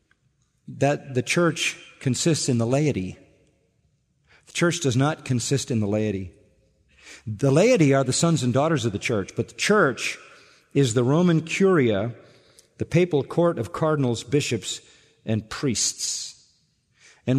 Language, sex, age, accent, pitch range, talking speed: English, male, 50-69, American, 115-150 Hz, 140 wpm